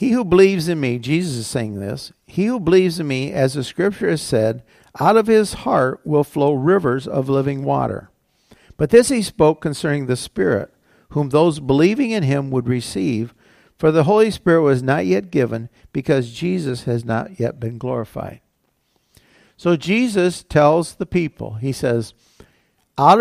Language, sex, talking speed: English, male, 170 wpm